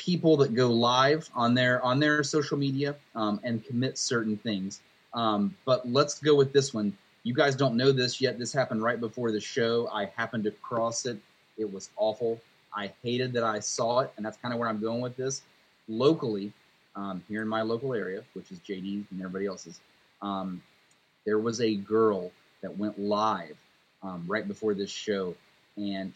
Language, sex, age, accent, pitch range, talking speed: English, male, 30-49, American, 100-125 Hz, 195 wpm